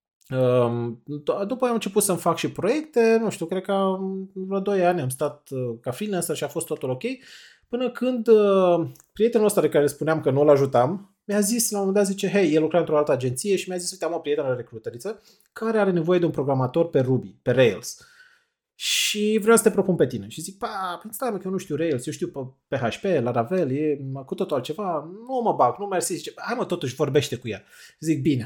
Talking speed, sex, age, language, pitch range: 225 wpm, male, 20-39, Romanian, 140-210 Hz